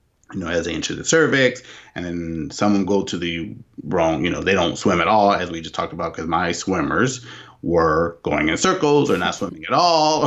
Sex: male